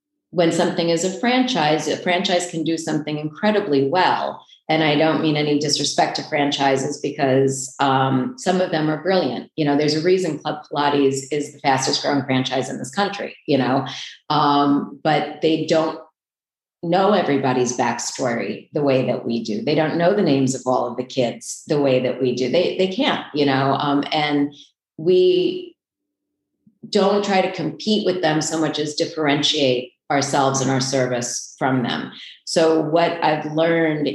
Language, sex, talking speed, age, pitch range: English, female, 175 wpm, 40-59, 135-160 Hz